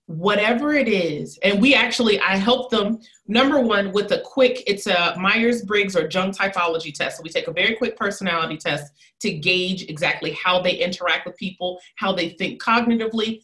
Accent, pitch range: American, 185-250 Hz